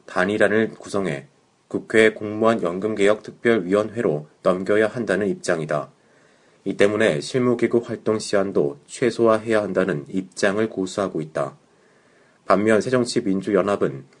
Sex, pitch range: male, 95-115 Hz